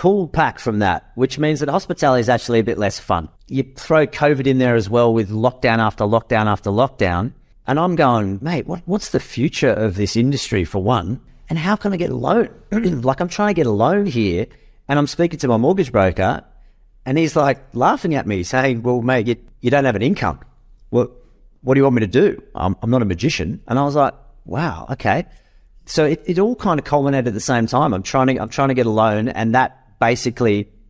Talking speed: 230 wpm